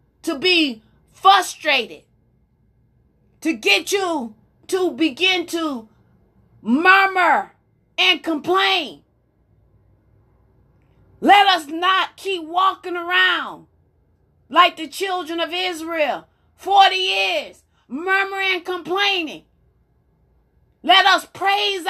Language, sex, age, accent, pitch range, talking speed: English, female, 30-49, American, 280-375 Hz, 85 wpm